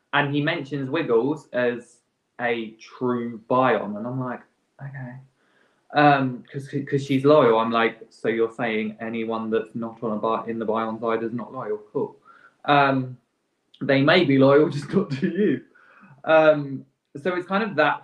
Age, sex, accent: 20-39, male, British